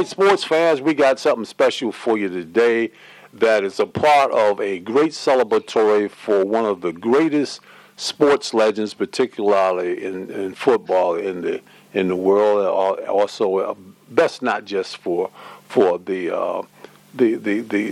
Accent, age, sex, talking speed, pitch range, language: American, 50-69, male, 150 wpm, 100-145 Hz, English